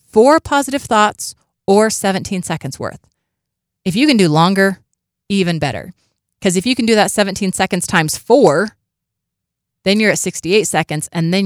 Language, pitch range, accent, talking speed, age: English, 155-200 Hz, American, 160 wpm, 30-49